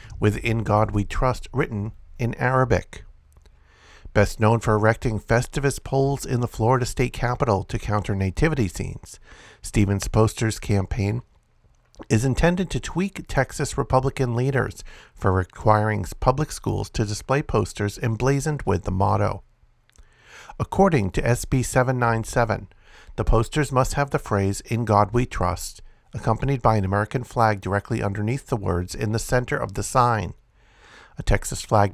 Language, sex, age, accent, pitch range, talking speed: English, male, 50-69, American, 100-130 Hz, 145 wpm